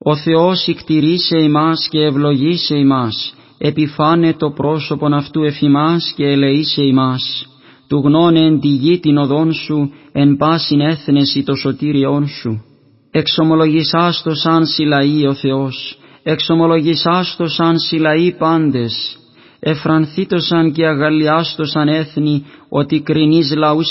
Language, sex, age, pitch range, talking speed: Greek, male, 30-49, 140-160 Hz, 125 wpm